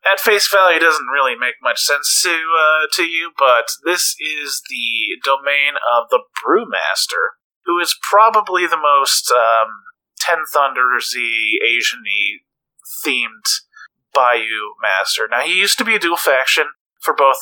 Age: 30-49